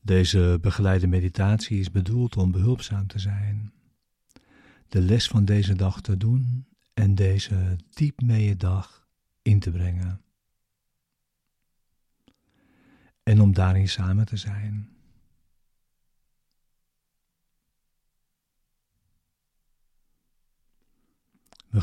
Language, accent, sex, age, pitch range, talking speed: Dutch, Dutch, male, 50-69, 95-110 Hz, 85 wpm